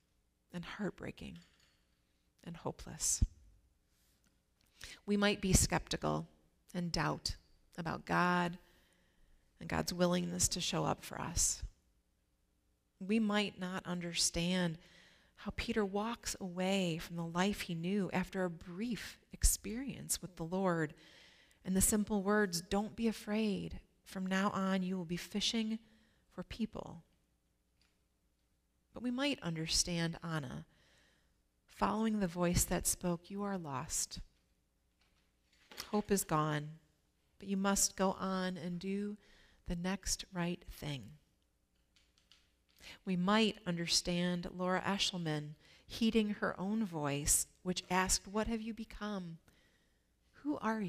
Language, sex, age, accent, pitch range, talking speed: English, female, 30-49, American, 150-200 Hz, 120 wpm